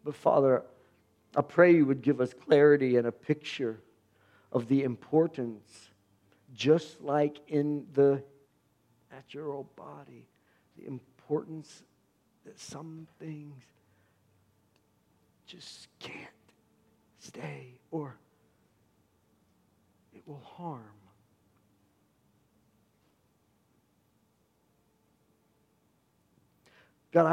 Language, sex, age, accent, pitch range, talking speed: English, male, 50-69, American, 120-160 Hz, 75 wpm